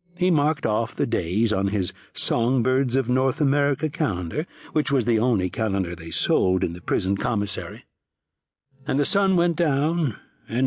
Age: 60-79